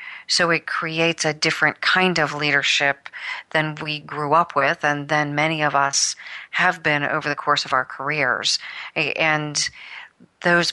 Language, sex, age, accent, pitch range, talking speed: English, female, 40-59, American, 145-165 Hz, 155 wpm